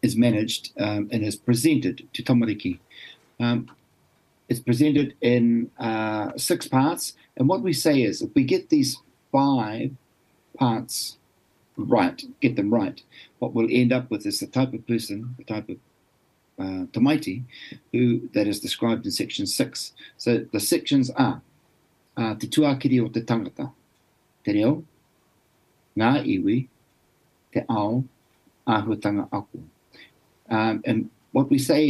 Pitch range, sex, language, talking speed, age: 115-140 Hz, male, English, 135 wpm, 50-69